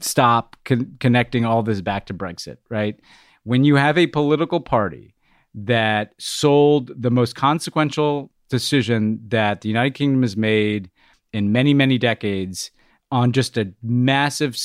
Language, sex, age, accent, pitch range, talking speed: English, male, 30-49, American, 110-135 Hz, 140 wpm